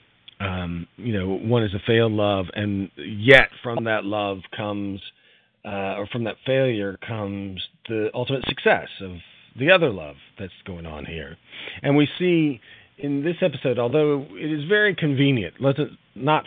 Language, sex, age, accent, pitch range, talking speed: English, male, 40-59, American, 90-125 Hz, 170 wpm